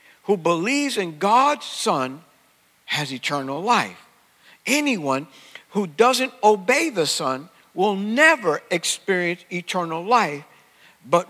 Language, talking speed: English, 105 wpm